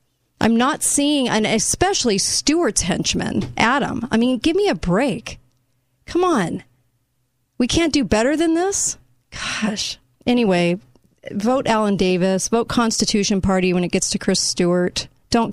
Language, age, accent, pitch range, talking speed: English, 40-59, American, 175-220 Hz, 145 wpm